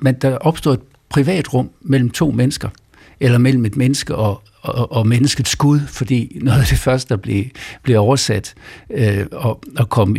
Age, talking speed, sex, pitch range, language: 60-79, 175 wpm, male, 115-140 Hz, Danish